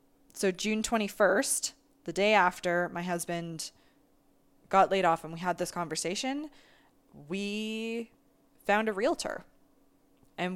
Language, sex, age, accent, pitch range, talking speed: English, female, 20-39, American, 170-205 Hz, 120 wpm